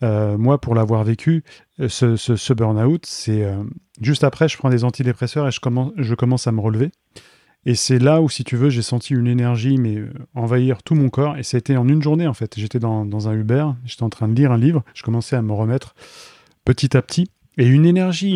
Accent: French